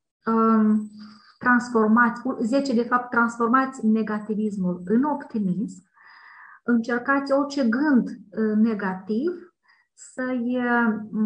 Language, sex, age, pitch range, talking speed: Romanian, female, 30-49, 210-270 Hz, 70 wpm